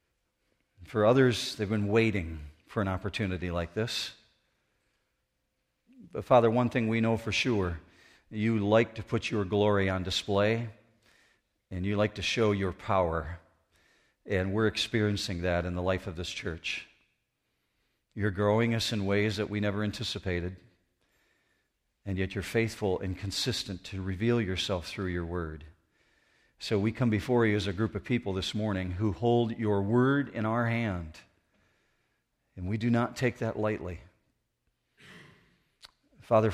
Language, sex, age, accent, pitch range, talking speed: English, male, 50-69, American, 95-115 Hz, 150 wpm